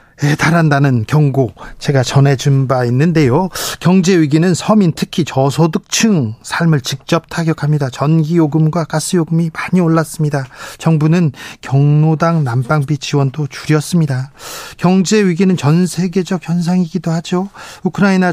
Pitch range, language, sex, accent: 140-180 Hz, Korean, male, native